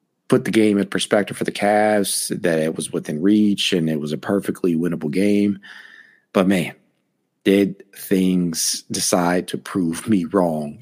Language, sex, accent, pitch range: English, male, American, 90-110 Hz